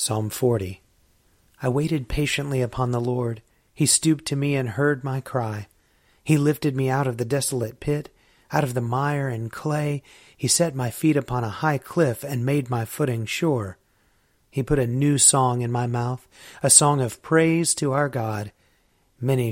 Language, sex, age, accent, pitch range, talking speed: English, male, 40-59, American, 115-140 Hz, 180 wpm